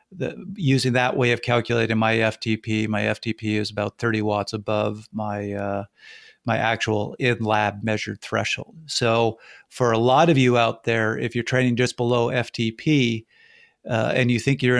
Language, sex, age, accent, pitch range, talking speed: English, male, 50-69, American, 115-135 Hz, 165 wpm